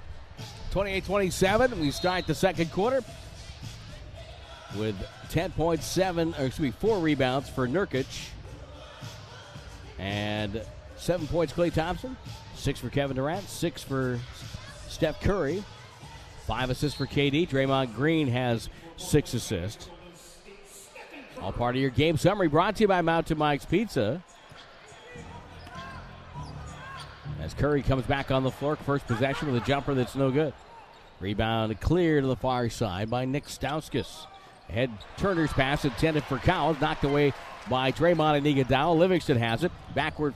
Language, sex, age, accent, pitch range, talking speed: English, male, 50-69, American, 125-160 Hz, 130 wpm